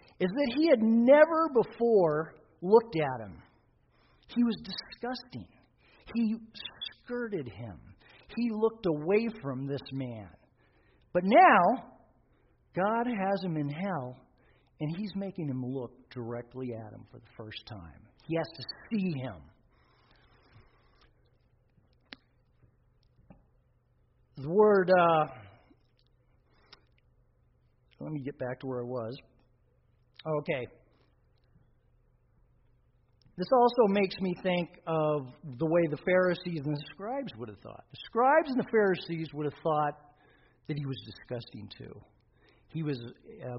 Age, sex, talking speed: 50-69, male, 125 wpm